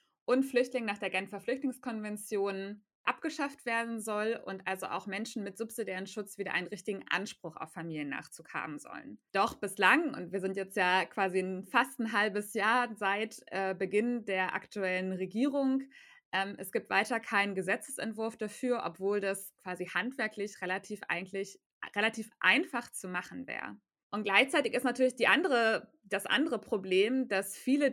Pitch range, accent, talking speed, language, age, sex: 190-240 Hz, German, 155 wpm, German, 20-39, female